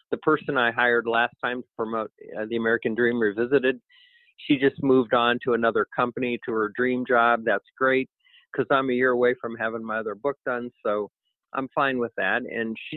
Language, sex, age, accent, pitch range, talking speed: English, male, 50-69, American, 115-140 Hz, 205 wpm